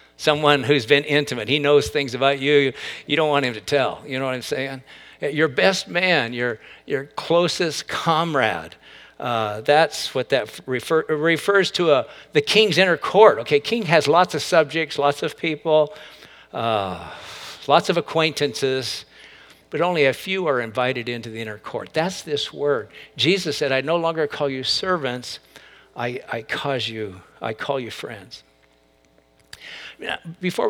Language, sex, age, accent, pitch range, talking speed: English, male, 60-79, American, 110-150 Hz, 160 wpm